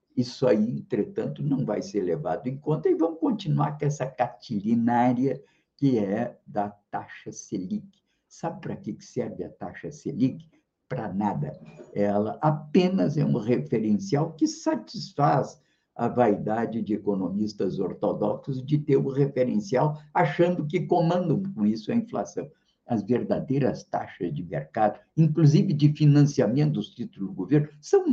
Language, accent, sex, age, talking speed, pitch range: Portuguese, Brazilian, male, 50-69, 140 wpm, 105-155 Hz